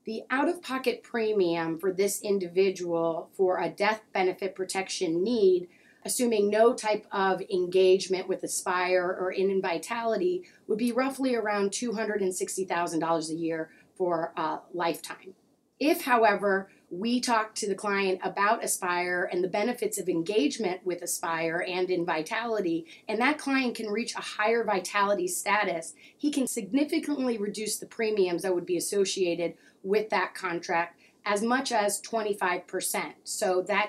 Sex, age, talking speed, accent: female, 30-49, 145 wpm, American